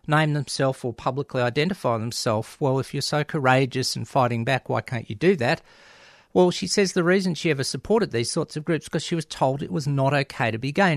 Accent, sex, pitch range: Australian, male, 125-155 Hz